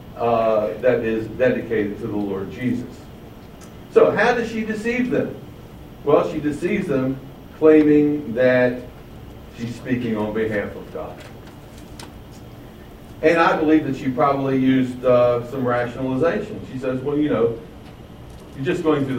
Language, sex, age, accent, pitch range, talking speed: English, male, 60-79, American, 115-180 Hz, 140 wpm